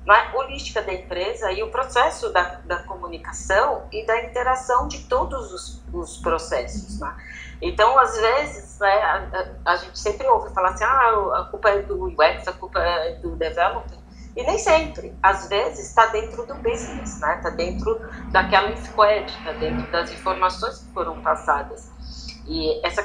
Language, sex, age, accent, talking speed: Portuguese, female, 30-49, Brazilian, 170 wpm